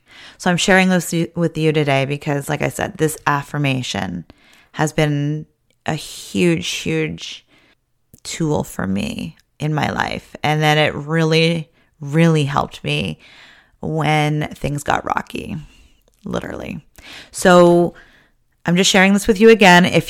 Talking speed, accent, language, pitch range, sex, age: 135 wpm, American, English, 155-190 Hz, female, 30-49